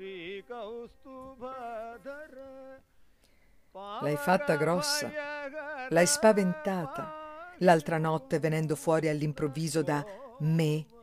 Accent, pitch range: native, 145-185 Hz